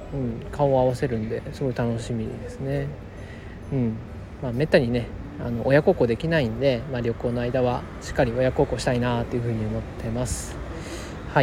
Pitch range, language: 110-165 Hz, Japanese